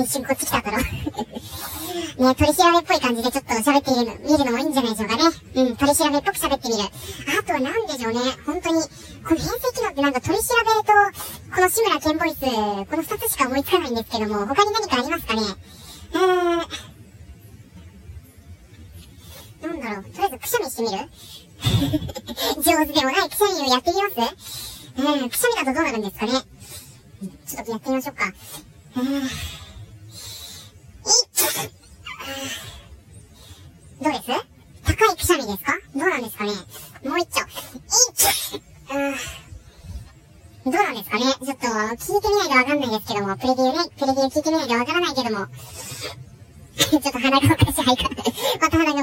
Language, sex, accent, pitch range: Japanese, male, American, 230-335 Hz